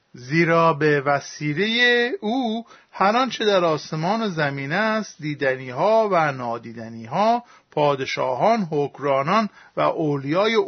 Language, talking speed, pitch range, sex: Persian, 110 wpm, 155-210 Hz, male